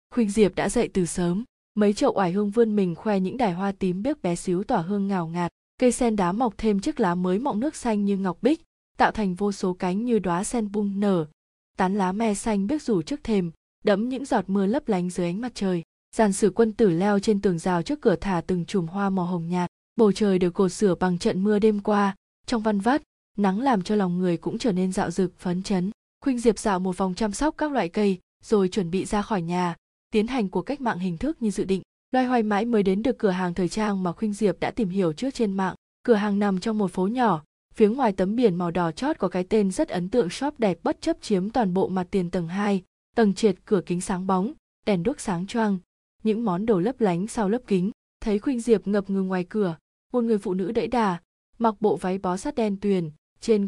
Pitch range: 185-225 Hz